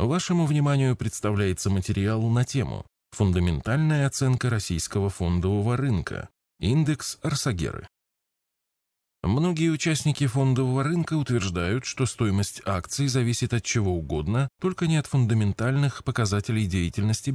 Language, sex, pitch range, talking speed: Russian, male, 95-125 Hz, 105 wpm